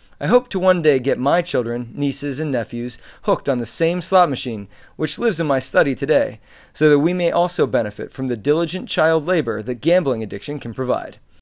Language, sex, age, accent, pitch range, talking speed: English, male, 30-49, American, 125-170 Hz, 205 wpm